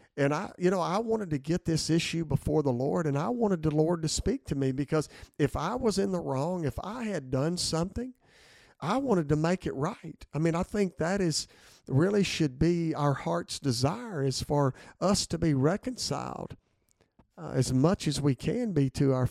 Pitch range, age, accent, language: 140-170 Hz, 50-69, American, English